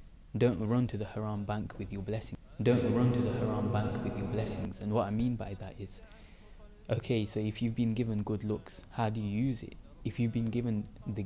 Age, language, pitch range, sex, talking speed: 20-39, English, 100-115 Hz, male, 230 wpm